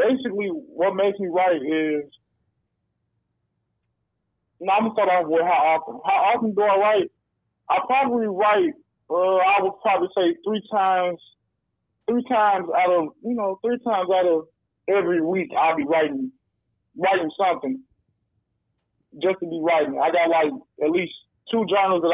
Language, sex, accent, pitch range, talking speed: English, male, American, 150-185 Hz, 155 wpm